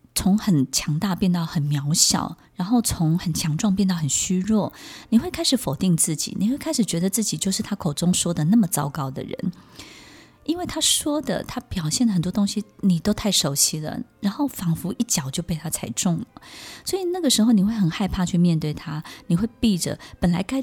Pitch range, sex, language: 155-210 Hz, female, Chinese